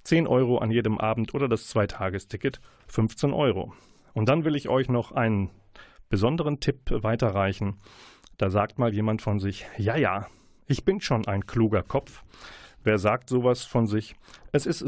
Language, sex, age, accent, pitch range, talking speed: German, male, 40-59, German, 105-130 Hz, 170 wpm